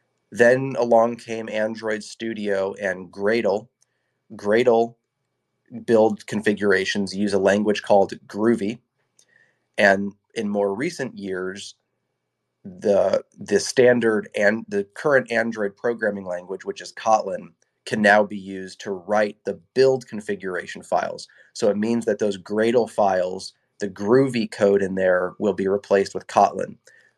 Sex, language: male, English